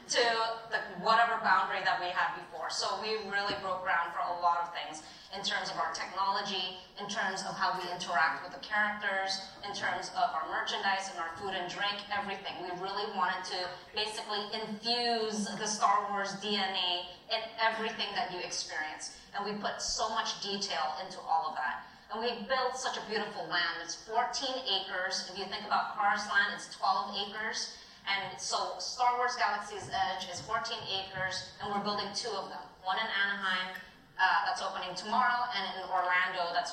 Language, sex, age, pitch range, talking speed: English, female, 20-39, 180-220 Hz, 185 wpm